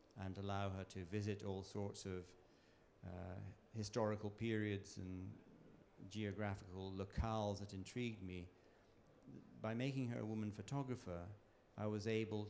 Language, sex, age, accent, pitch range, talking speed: English, male, 40-59, British, 95-110 Hz, 125 wpm